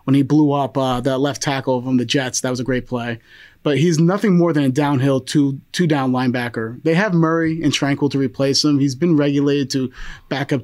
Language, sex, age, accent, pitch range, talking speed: English, male, 30-49, American, 135-170 Hz, 220 wpm